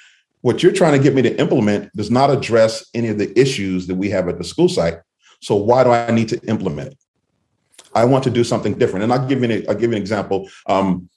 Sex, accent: male, American